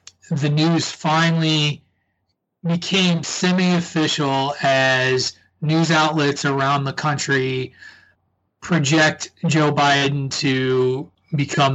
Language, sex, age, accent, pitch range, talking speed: English, male, 30-49, American, 130-155 Hz, 80 wpm